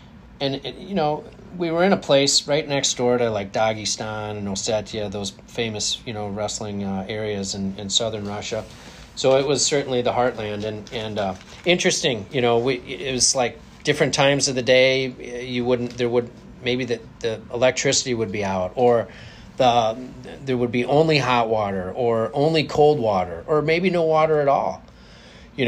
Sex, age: male, 30-49